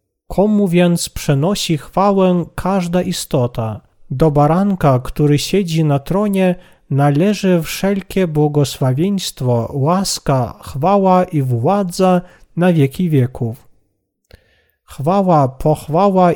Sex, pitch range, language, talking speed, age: male, 140-190 Hz, Polish, 90 wpm, 40-59